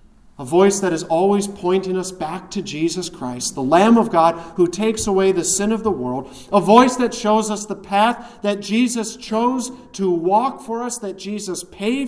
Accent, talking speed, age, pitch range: American, 200 wpm, 40-59, 135-200 Hz